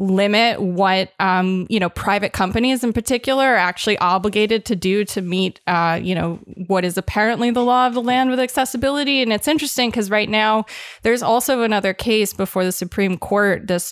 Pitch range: 190-230 Hz